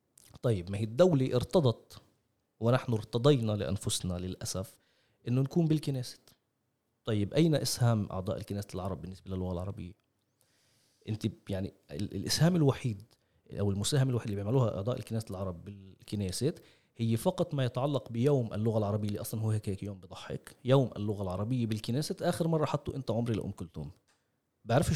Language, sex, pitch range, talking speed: Arabic, male, 105-135 Hz, 140 wpm